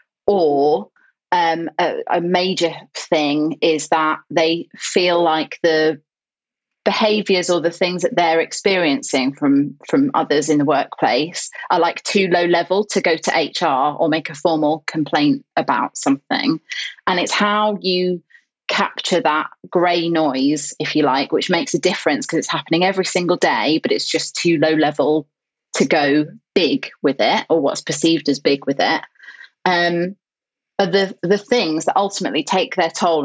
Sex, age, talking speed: female, 30-49, 160 wpm